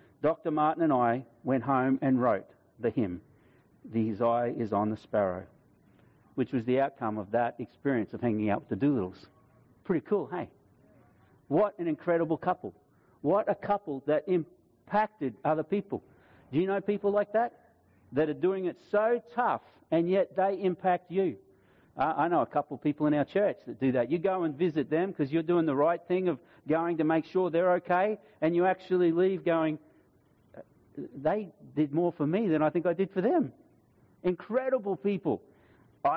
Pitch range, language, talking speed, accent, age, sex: 130-180 Hz, English, 180 wpm, Australian, 50-69, male